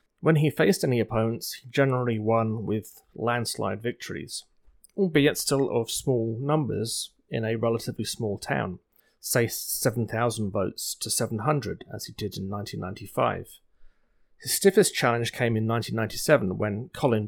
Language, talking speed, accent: English, 135 wpm, British